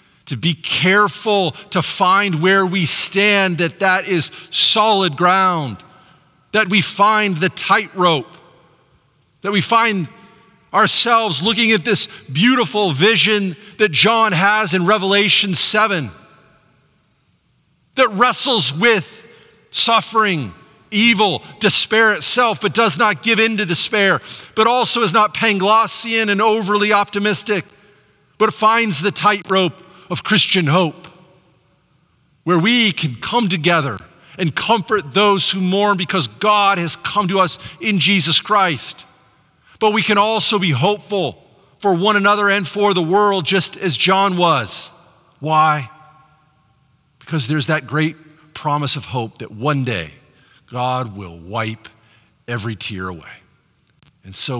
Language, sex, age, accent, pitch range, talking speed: English, male, 40-59, American, 150-210 Hz, 130 wpm